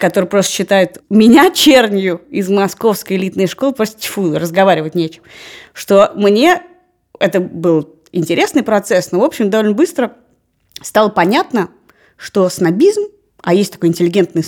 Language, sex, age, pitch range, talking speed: Russian, female, 20-39, 185-250 Hz, 135 wpm